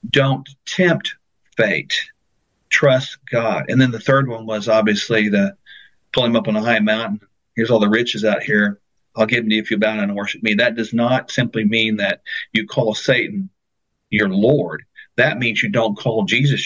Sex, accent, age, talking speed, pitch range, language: male, American, 50-69, 200 wpm, 110-160 Hz, English